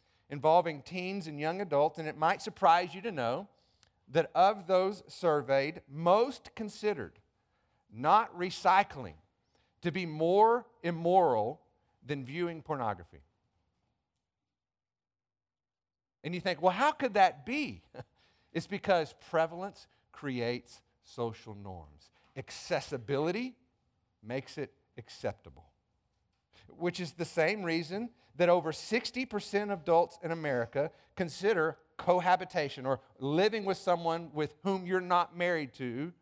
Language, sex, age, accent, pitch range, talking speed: English, male, 50-69, American, 130-190 Hz, 115 wpm